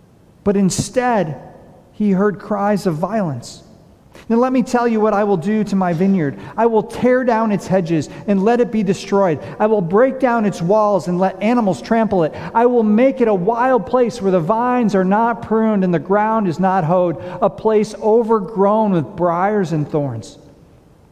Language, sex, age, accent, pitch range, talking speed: English, male, 40-59, American, 170-220 Hz, 190 wpm